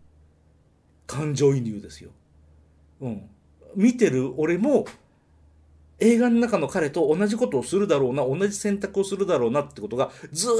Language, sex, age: Japanese, male, 40-59